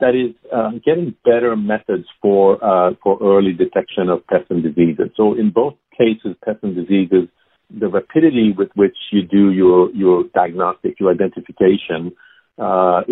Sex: male